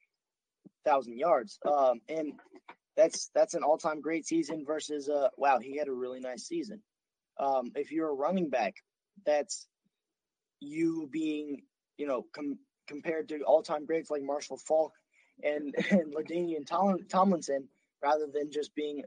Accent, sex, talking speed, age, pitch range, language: American, male, 145 wpm, 20-39, 135-175 Hz, English